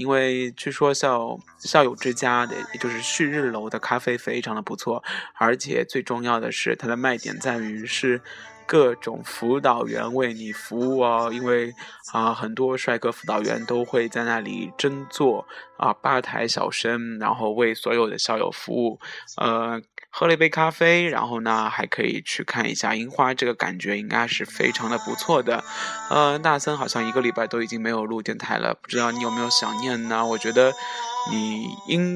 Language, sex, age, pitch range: Chinese, male, 20-39, 115-140 Hz